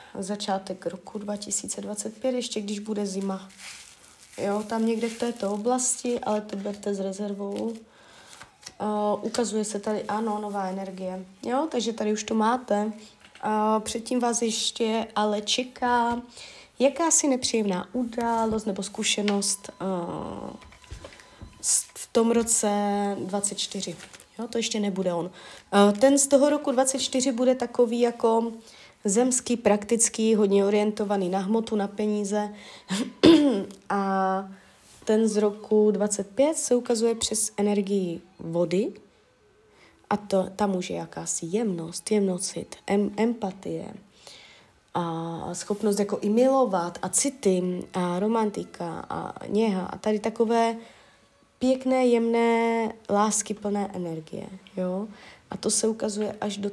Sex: female